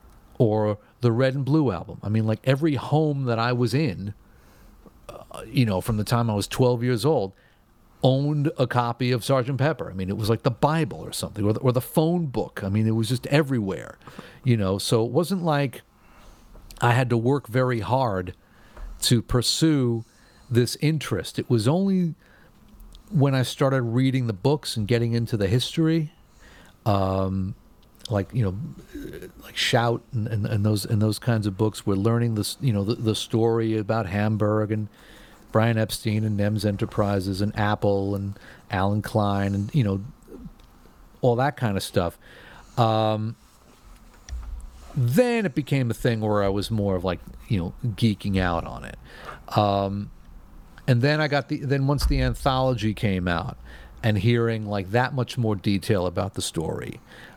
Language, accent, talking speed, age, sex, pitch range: English, American, 175 wpm, 50-69, male, 105-130 Hz